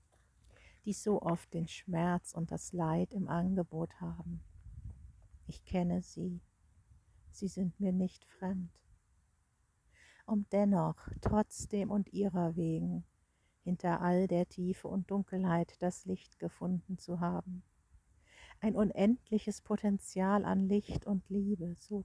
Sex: female